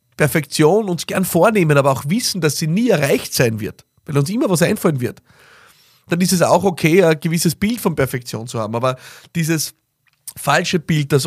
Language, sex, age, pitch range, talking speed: German, male, 30-49, 130-170 Hz, 190 wpm